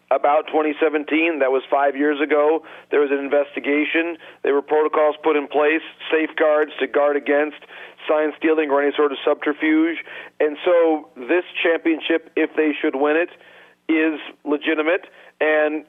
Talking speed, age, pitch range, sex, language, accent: 150 wpm, 40-59, 145-160 Hz, male, English, American